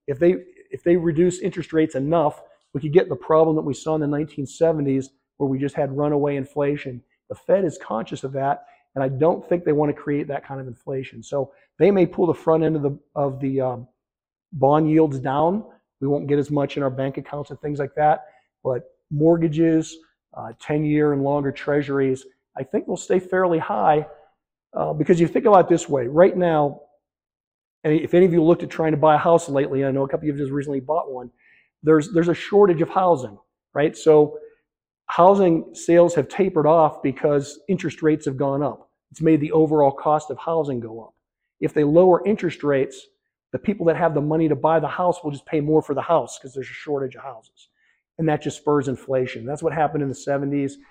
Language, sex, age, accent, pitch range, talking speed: English, male, 40-59, American, 140-165 Hz, 220 wpm